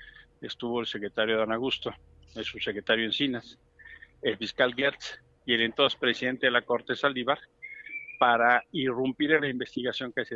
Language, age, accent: Spanish, 50-69, Mexican